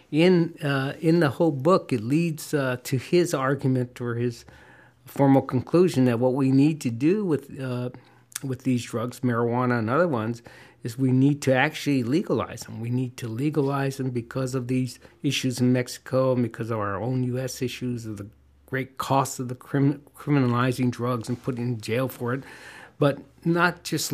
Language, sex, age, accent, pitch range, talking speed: English, male, 60-79, American, 125-140 Hz, 185 wpm